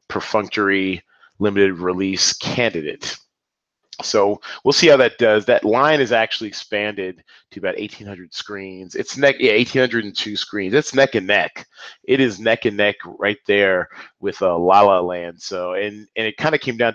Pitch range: 95-125 Hz